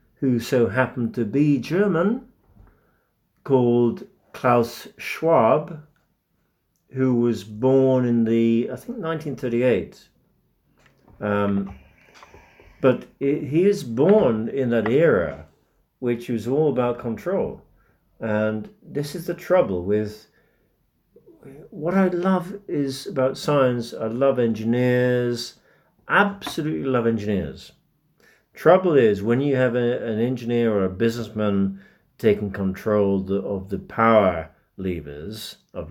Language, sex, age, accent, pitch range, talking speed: English, male, 50-69, British, 105-135 Hz, 110 wpm